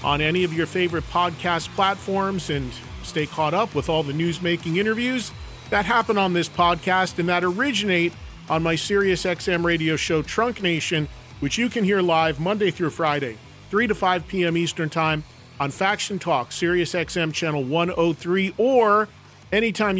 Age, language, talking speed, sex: 40-59, English, 165 wpm, male